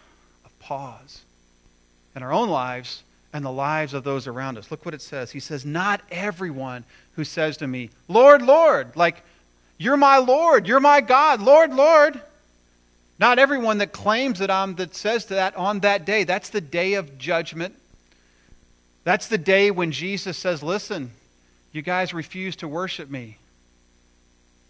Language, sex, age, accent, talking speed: English, male, 40-59, American, 160 wpm